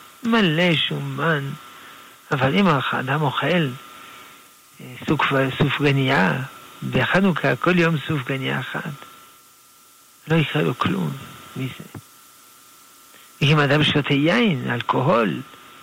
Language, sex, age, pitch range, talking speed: Hebrew, male, 60-79, 120-155 Hz, 95 wpm